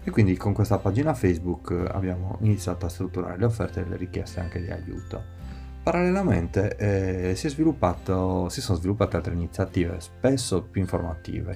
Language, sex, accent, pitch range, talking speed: Italian, male, native, 90-110 Hz, 155 wpm